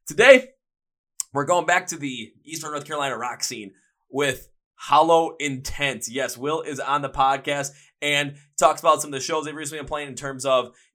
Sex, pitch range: male, 125-150 Hz